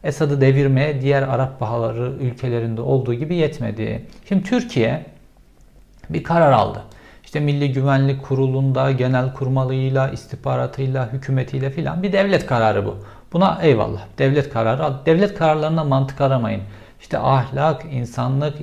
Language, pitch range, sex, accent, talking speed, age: Turkish, 120-150 Hz, male, native, 125 wpm, 50-69